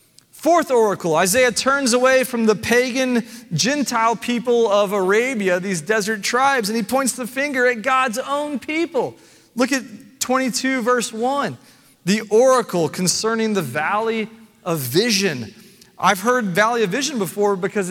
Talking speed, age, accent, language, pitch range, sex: 145 wpm, 30-49, American, English, 205-260 Hz, male